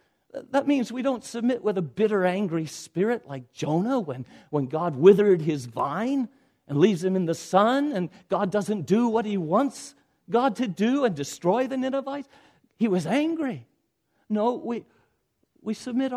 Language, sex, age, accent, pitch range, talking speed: English, male, 50-69, American, 150-245 Hz, 165 wpm